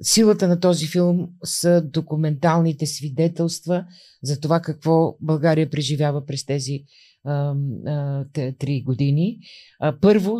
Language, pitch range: Bulgarian, 135-165 Hz